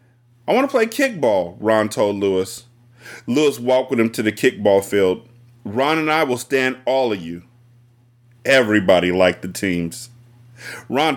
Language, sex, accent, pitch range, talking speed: English, male, American, 120-150 Hz, 155 wpm